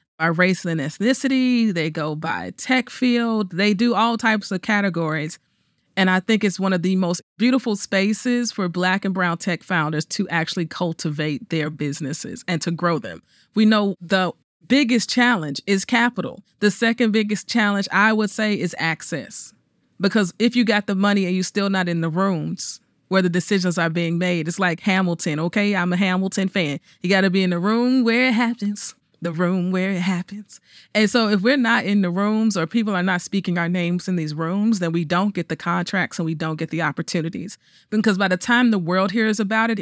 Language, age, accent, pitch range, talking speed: English, 30-49, American, 175-220 Hz, 205 wpm